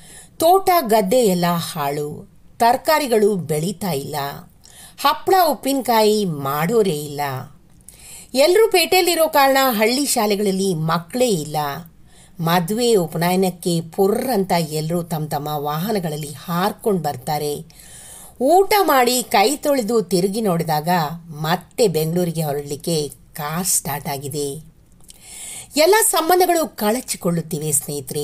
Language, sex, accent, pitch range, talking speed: English, female, Indian, 155-245 Hz, 70 wpm